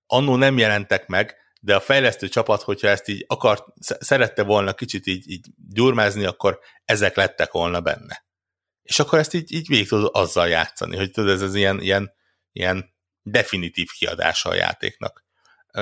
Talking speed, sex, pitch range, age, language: 165 wpm, male, 95-115 Hz, 60-79, Hungarian